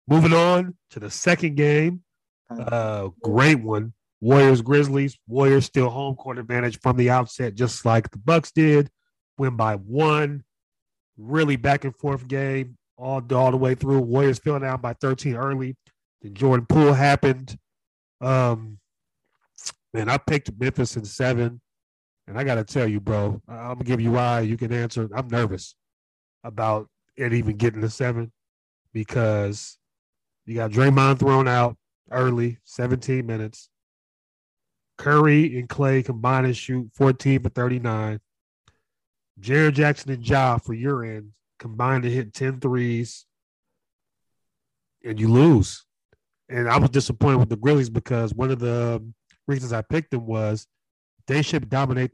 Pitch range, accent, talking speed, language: 115-135 Hz, American, 150 wpm, English